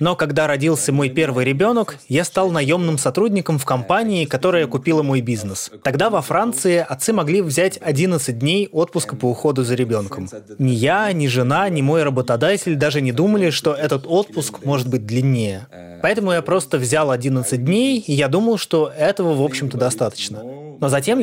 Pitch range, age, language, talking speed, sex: 130-170 Hz, 20-39, Russian, 170 wpm, male